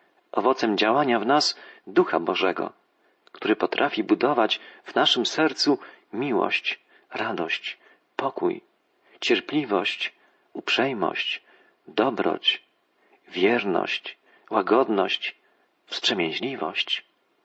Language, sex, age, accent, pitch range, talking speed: Polish, male, 40-59, native, 345-360 Hz, 70 wpm